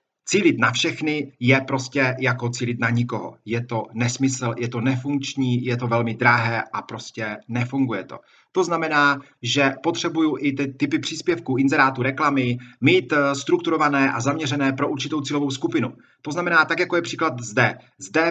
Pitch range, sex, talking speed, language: 125-155 Hz, male, 160 wpm, Slovak